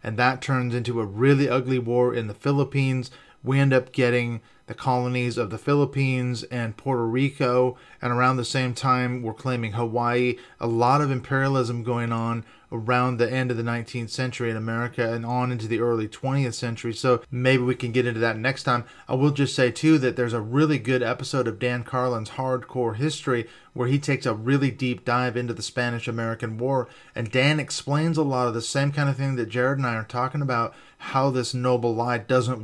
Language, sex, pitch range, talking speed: English, male, 120-130 Hz, 205 wpm